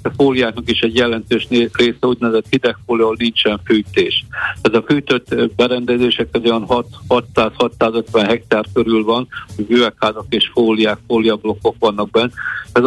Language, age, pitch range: Hungarian, 60-79, 110-120 Hz